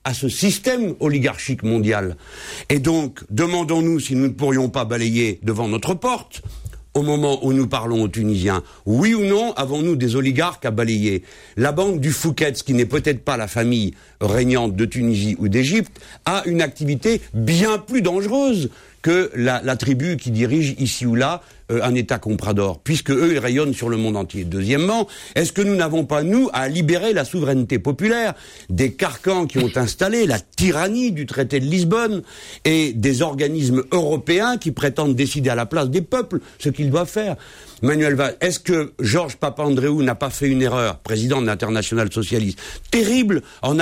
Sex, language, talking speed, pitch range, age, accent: male, French, 175 wpm, 120-170 Hz, 60-79, French